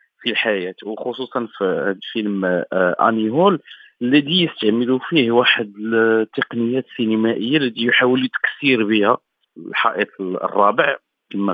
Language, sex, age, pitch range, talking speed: Arabic, male, 40-59, 105-145 Hz, 110 wpm